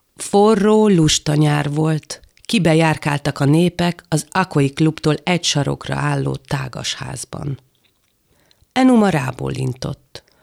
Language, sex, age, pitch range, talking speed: Hungarian, female, 40-59, 140-170 Hz, 100 wpm